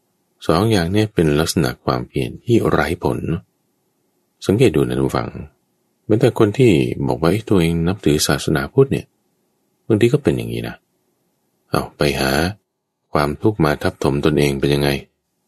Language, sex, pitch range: Thai, male, 70-95 Hz